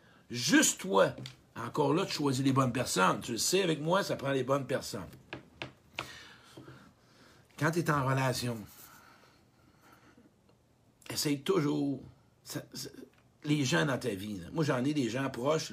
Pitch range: 125-155 Hz